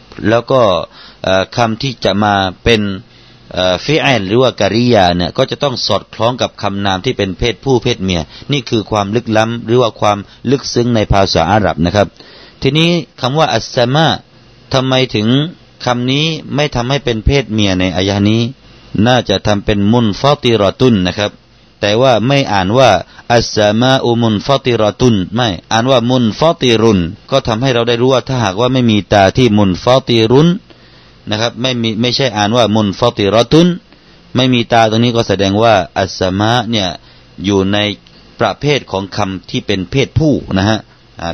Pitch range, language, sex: 100-125 Hz, Thai, male